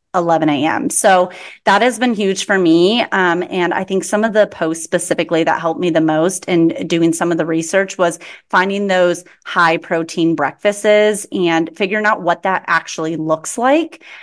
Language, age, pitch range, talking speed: English, 30-49, 170-210 Hz, 175 wpm